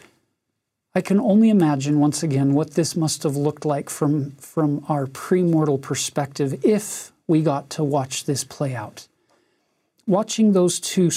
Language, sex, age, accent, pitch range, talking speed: English, male, 40-59, American, 145-175 Hz, 150 wpm